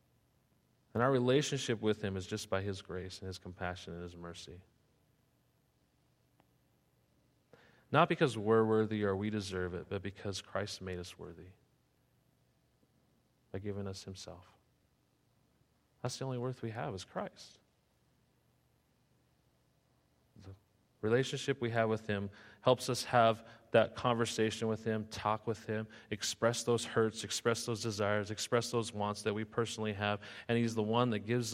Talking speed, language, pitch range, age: 145 wpm, English, 95-115 Hz, 40-59